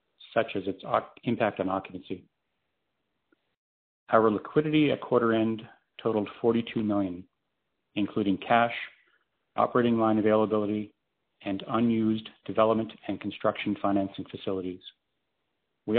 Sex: male